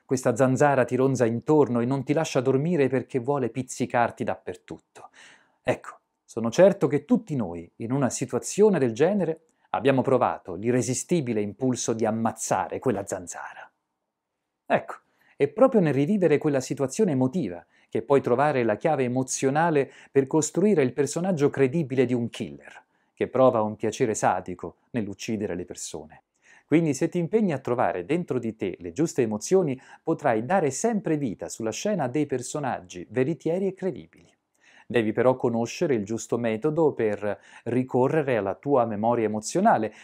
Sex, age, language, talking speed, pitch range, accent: male, 40-59, Italian, 145 wpm, 115-165 Hz, native